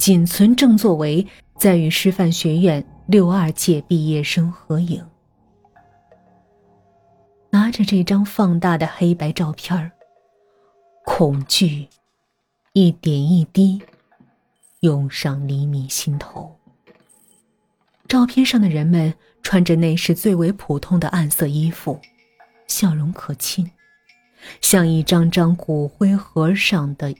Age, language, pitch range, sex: 30-49, Chinese, 155-205 Hz, female